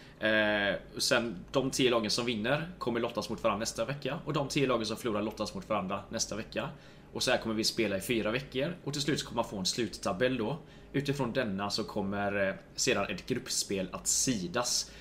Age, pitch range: 20-39, 110-135 Hz